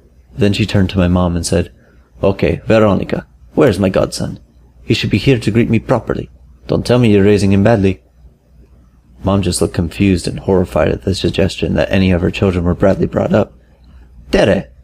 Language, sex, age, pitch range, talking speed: English, male, 30-49, 70-100 Hz, 190 wpm